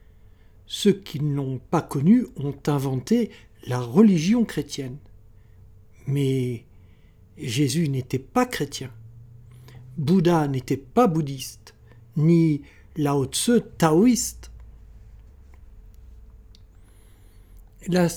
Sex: male